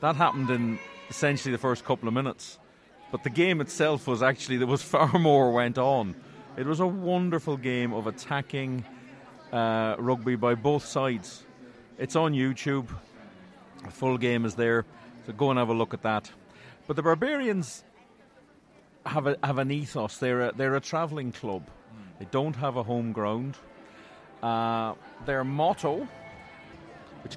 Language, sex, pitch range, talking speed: English, male, 120-145 Hz, 160 wpm